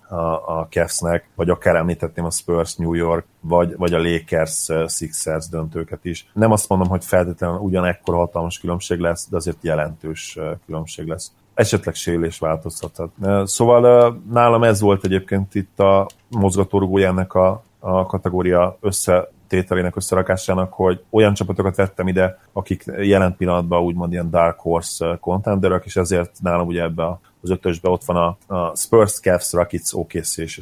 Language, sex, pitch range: Hungarian, male, 85-100 Hz